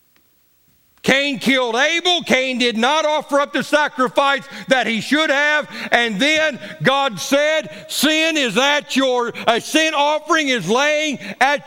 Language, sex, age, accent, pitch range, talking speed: English, male, 50-69, American, 245-300 Hz, 145 wpm